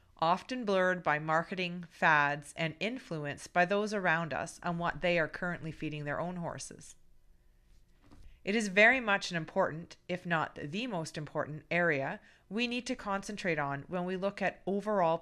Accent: American